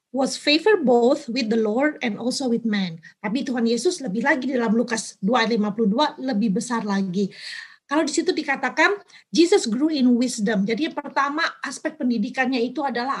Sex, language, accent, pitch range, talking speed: female, Indonesian, native, 230-305 Hz, 170 wpm